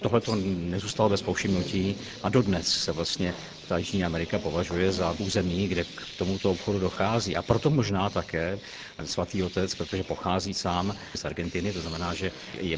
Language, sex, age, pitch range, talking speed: Czech, male, 50-69, 90-100 Hz, 165 wpm